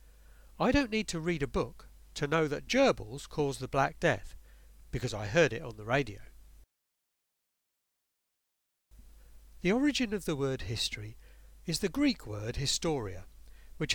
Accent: British